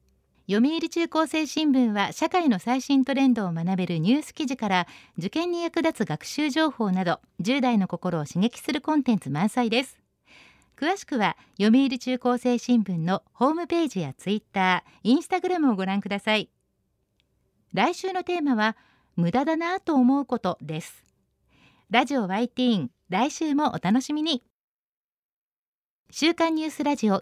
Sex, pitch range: female, 195-295 Hz